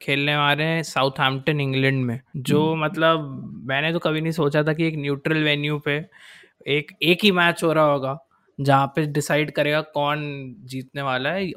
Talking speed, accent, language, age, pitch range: 180 wpm, native, Hindi, 20-39, 140-165 Hz